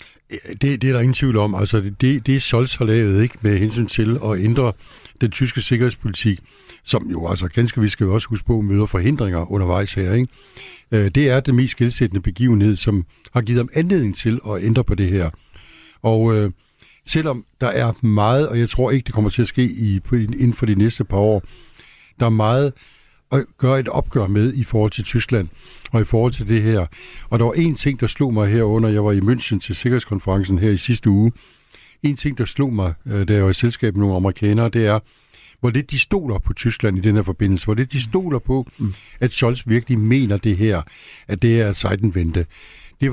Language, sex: Danish, male